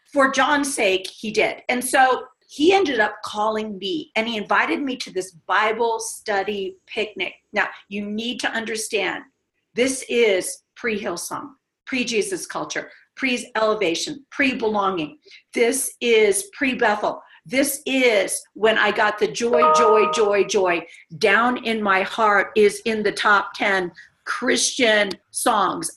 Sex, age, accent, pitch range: female, 50-69, American, 205-265 Hz